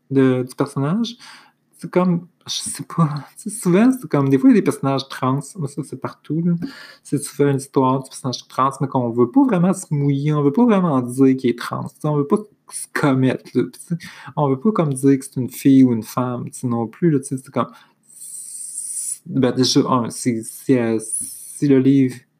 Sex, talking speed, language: male, 195 wpm, French